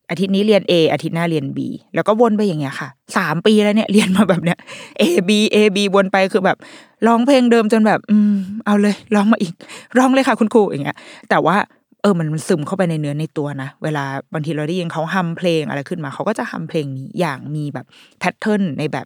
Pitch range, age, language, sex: 155-210 Hz, 20-39, Thai, female